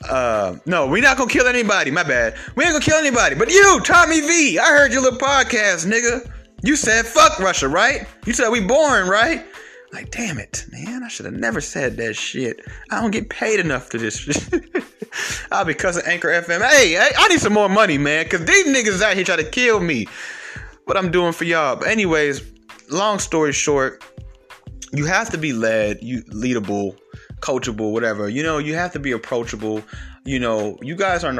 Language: English